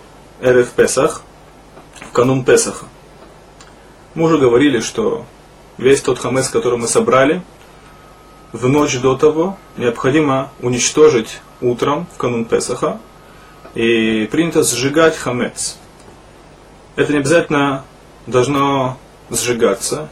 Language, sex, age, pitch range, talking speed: Russian, male, 20-39, 120-155 Hz, 100 wpm